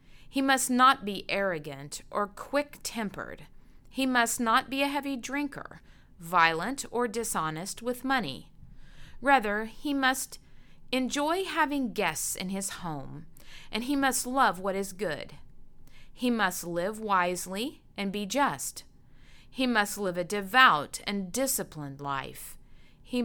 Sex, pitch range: female, 180-260 Hz